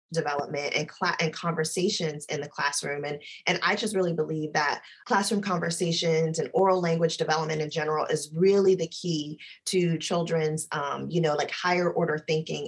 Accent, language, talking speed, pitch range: American, English, 170 wpm, 155-190 Hz